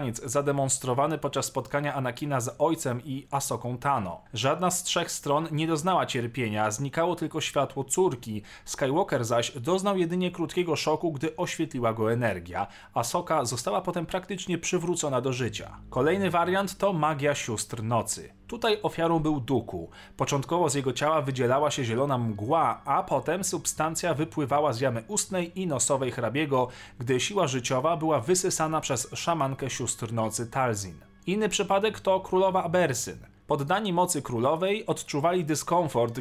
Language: Polish